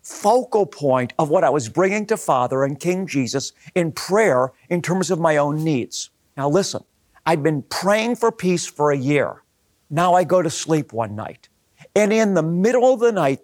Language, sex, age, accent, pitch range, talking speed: English, male, 50-69, American, 145-195 Hz, 200 wpm